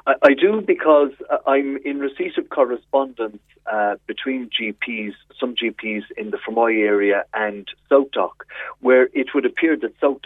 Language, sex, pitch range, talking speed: English, male, 105-140 Hz, 165 wpm